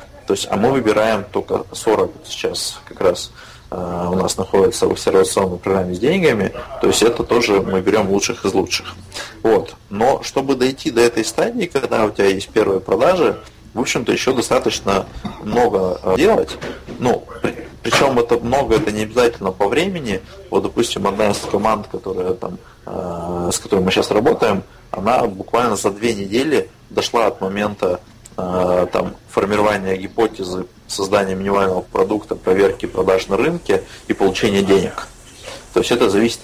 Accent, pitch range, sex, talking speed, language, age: native, 95-110 Hz, male, 145 wpm, Russian, 20-39